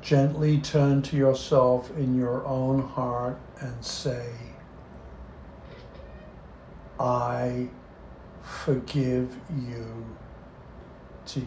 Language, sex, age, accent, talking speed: English, male, 60-79, American, 75 wpm